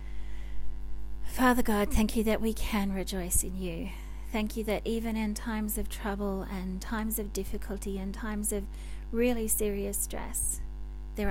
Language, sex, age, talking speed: English, female, 30-49, 155 wpm